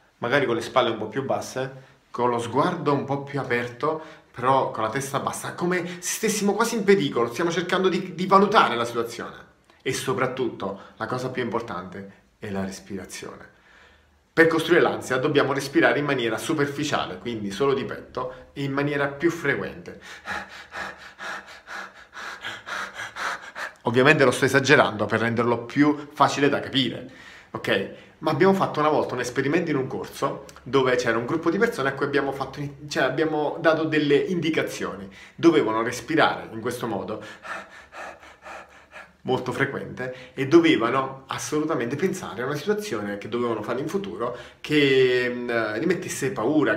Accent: native